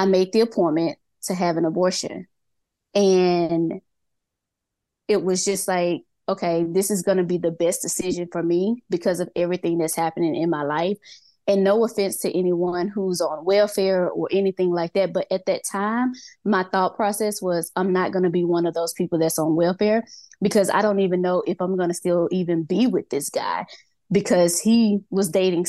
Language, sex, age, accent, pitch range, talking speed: English, female, 20-39, American, 175-200 Hz, 195 wpm